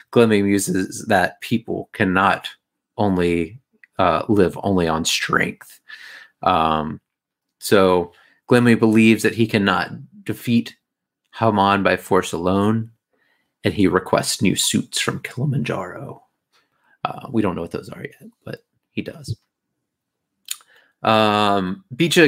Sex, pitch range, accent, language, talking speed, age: male, 90-110 Hz, American, English, 115 wpm, 30-49